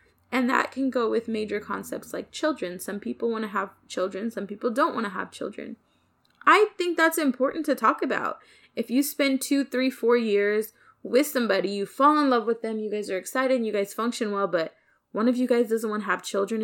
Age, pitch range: 20-39, 205-260 Hz